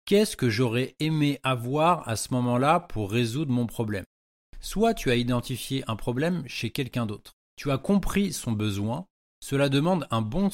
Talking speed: 170 wpm